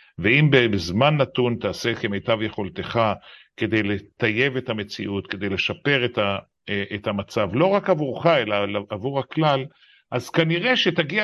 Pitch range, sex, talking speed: 105-160 Hz, male, 125 wpm